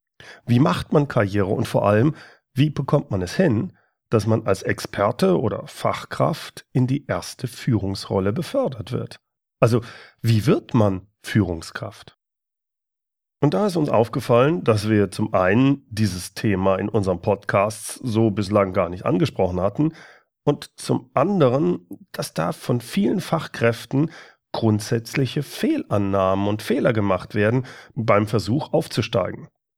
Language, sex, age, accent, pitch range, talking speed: German, male, 40-59, German, 105-130 Hz, 135 wpm